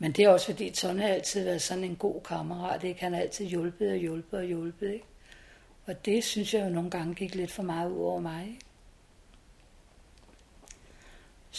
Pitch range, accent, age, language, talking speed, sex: 170-200 Hz, native, 60-79, Danish, 195 wpm, female